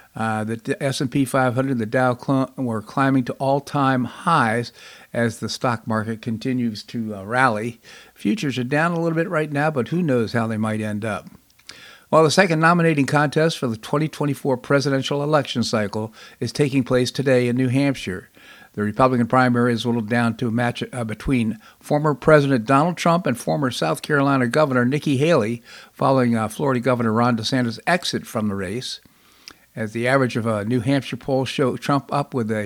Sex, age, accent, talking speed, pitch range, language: male, 50-69, American, 185 wpm, 115-140 Hz, English